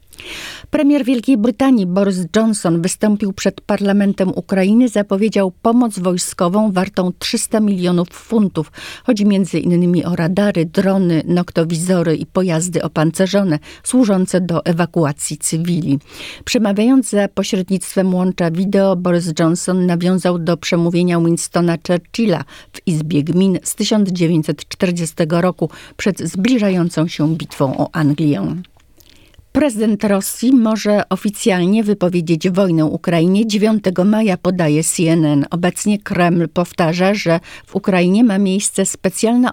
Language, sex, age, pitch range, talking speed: Polish, female, 50-69, 165-205 Hz, 115 wpm